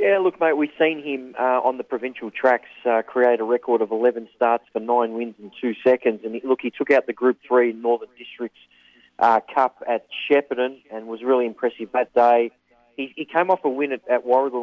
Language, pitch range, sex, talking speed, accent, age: English, 115-135 Hz, male, 220 wpm, Australian, 30-49